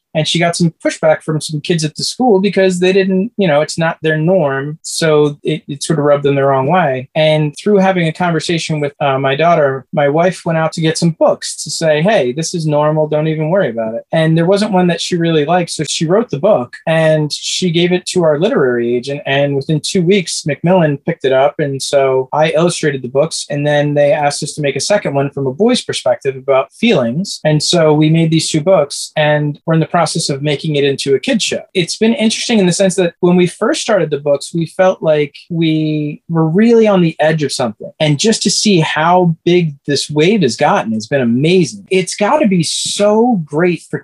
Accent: American